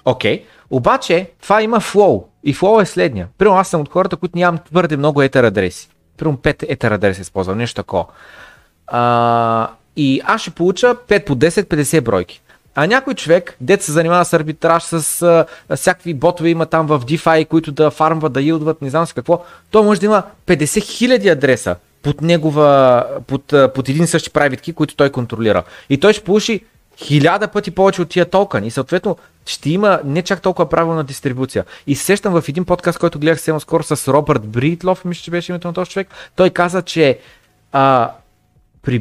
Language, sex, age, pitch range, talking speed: Bulgarian, male, 30-49, 140-180 Hz, 185 wpm